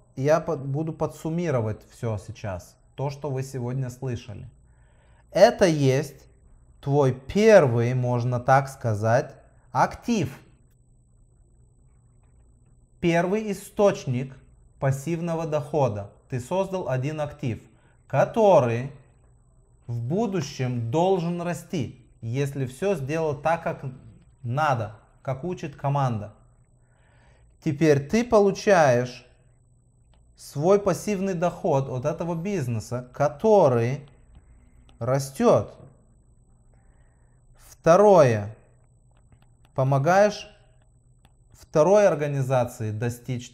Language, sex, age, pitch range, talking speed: English, male, 20-39, 120-165 Hz, 75 wpm